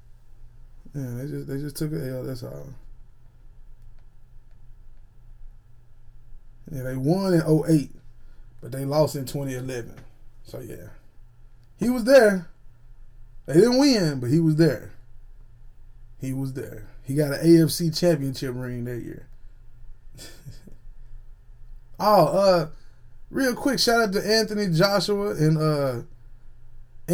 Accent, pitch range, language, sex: American, 120-180 Hz, English, male